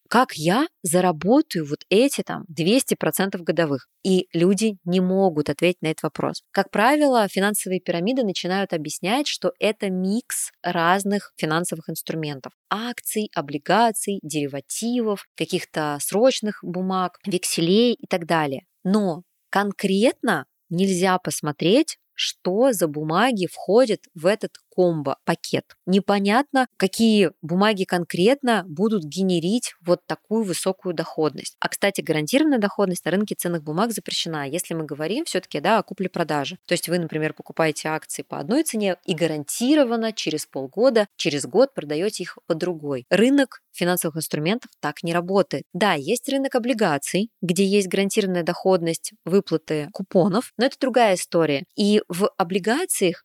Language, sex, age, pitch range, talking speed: Russian, female, 20-39, 165-215 Hz, 130 wpm